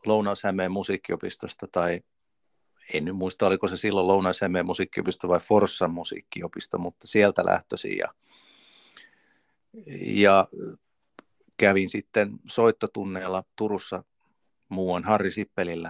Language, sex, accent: Finnish, male, native